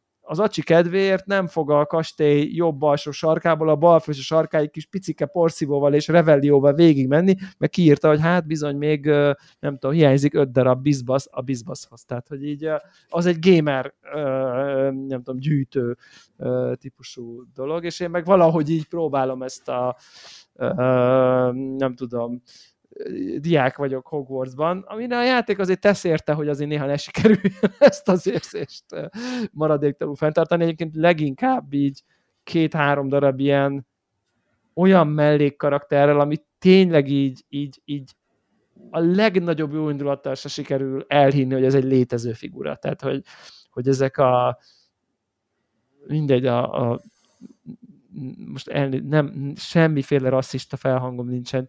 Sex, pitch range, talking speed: male, 135-165 Hz, 130 wpm